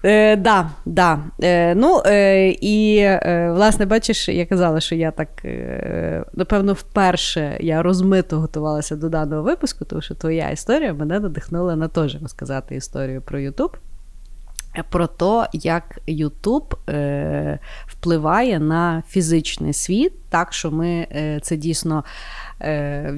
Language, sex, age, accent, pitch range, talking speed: Ukrainian, female, 30-49, native, 150-195 Hz, 140 wpm